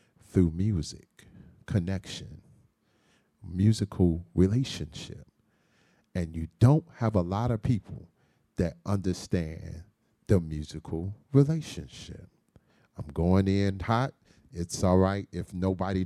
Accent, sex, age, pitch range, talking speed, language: American, male, 40-59, 90-115 Hz, 100 wpm, English